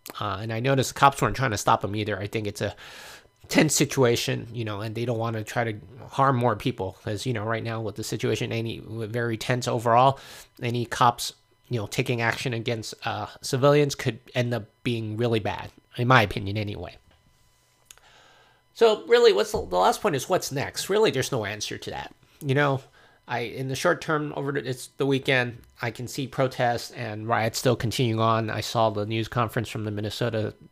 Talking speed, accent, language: 205 wpm, American, English